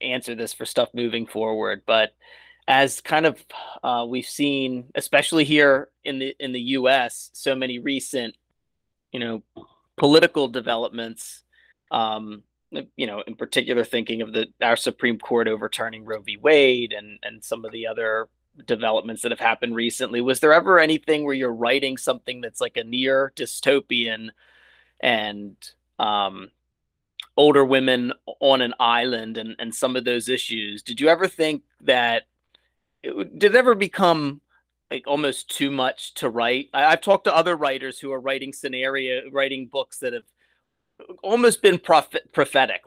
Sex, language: male, English